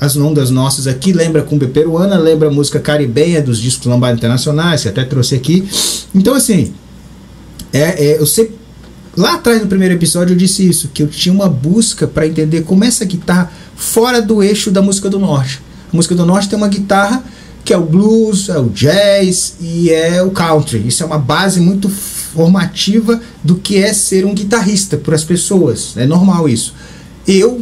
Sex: male